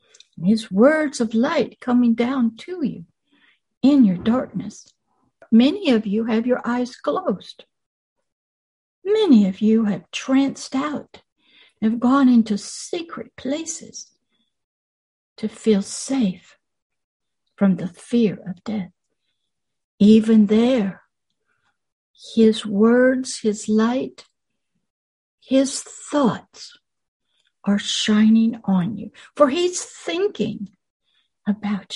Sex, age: female, 60-79